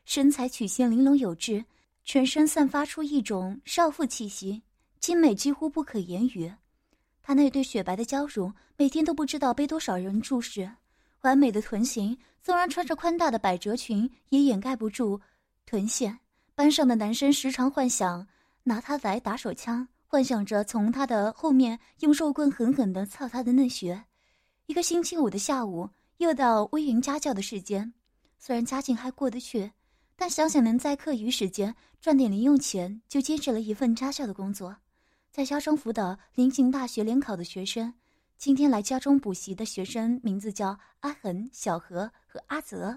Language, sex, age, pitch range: Chinese, female, 20-39, 215-280 Hz